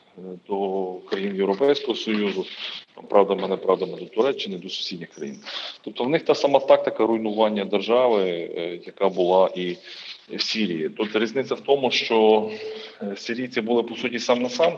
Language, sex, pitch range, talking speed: Ukrainian, male, 105-145 Hz, 160 wpm